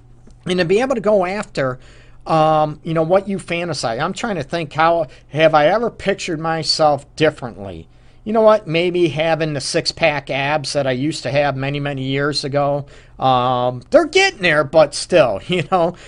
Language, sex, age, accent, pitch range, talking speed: English, male, 40-59, American, 130-165 Hz, 185 wpm